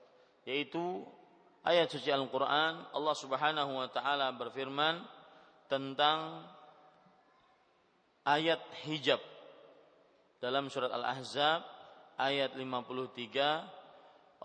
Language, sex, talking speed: Malay, male, 70 wpm